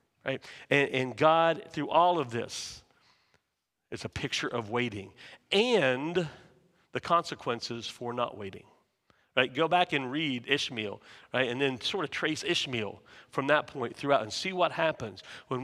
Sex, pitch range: male, 120-155 Hz